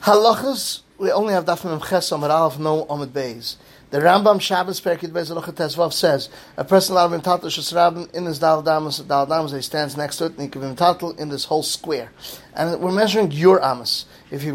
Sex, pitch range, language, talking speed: male, 145-180 Hz, English, 185 wpm